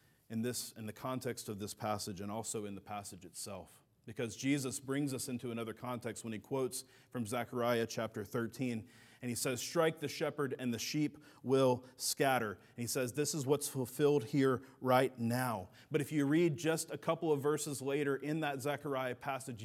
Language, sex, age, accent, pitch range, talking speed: English, male, 40-59, American, 125-155 Hz, 190 wpm